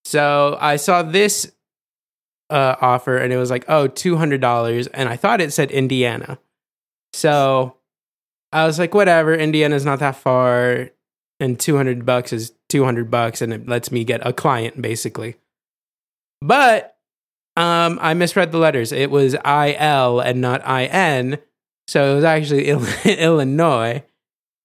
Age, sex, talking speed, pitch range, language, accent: 20-39, male, 145 wpm, 125-150 Hz, English, American